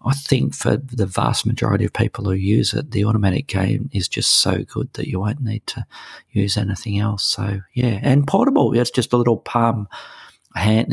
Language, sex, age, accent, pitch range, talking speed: English, male, 40-59, Australian, 100-115 Hz, 200 wpm